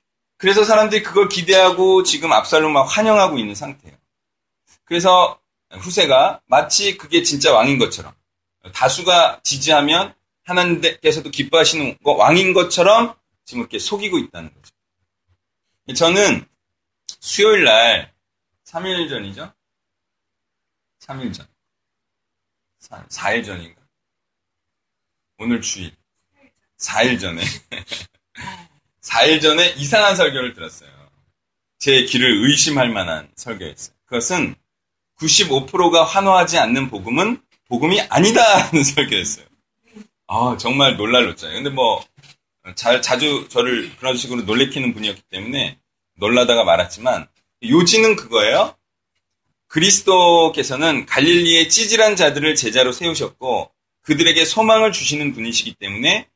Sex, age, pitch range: male, 30-49, 120-190 Hz